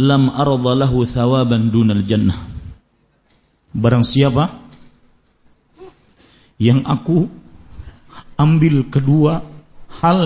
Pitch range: 125-160 Hz